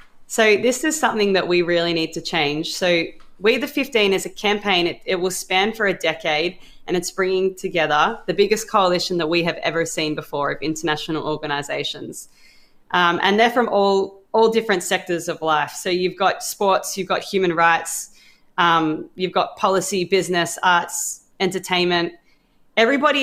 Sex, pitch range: female, 165-195 Hz